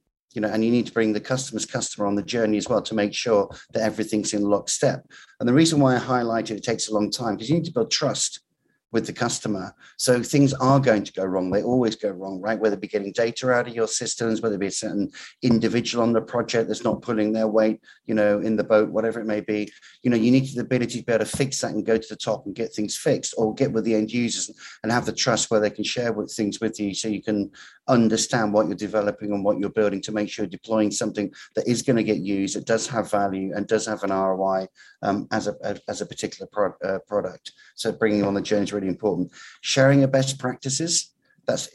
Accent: British